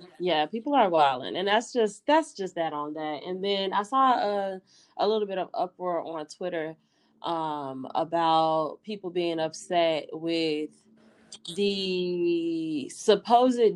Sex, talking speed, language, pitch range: female, 140 wpm, English, 170-205 Hz